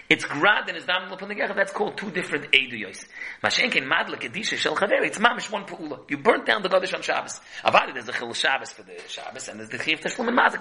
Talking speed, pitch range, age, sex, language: 220 wpm, 155-190 Hz, 40-59, male, English